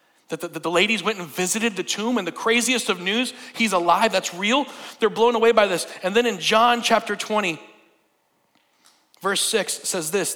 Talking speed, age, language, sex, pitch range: 190 wpm, 40-59, English, male, 200-250 Hz